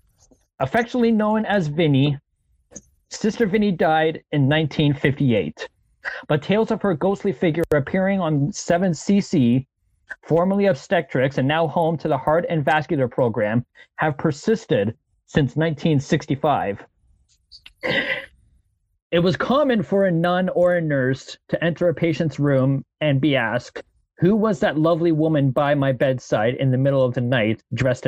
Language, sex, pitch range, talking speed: English, male, 135-185 Hz, 140 wpm